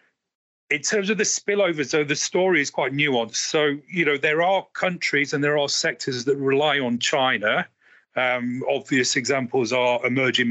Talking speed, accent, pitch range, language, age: 170 wpm, British, 115-140 Hz, English, 40-59